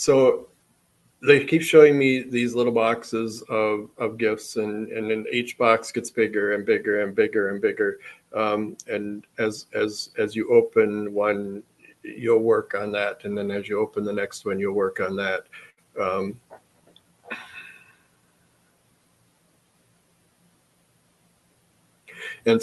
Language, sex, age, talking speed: English, male, 50-69, 130 wpm